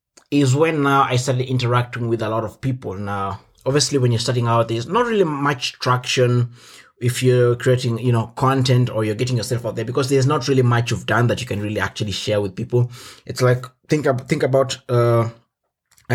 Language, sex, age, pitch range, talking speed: English, male, 20-39, 115-130 Hz, 210 wpm